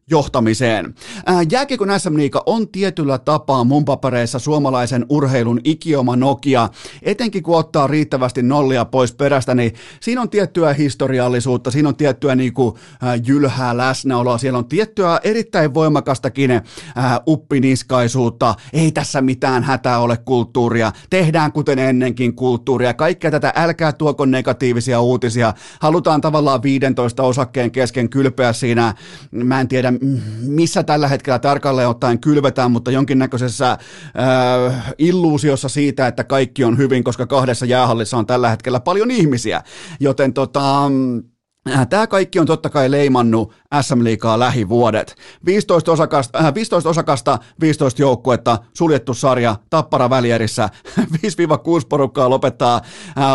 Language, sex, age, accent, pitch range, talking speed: Finnish, male, 30-49, native, 125-150 Hz, 125 wpm